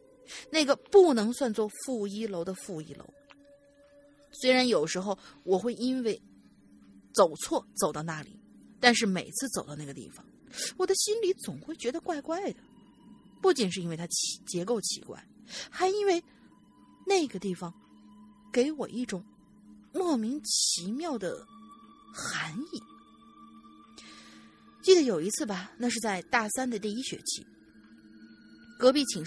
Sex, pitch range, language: female, 185-270 Hz, Chinese